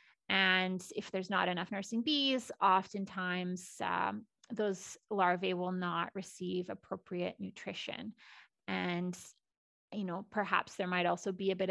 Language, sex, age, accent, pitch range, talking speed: English, female, 20-39, American, 175-205 Hz, 135 wpm